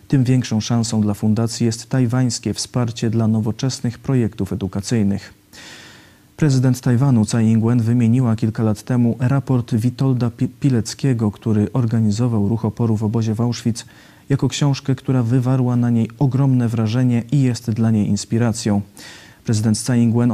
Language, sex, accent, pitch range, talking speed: Polish, male, native, 110-130 Hz, 140 wpm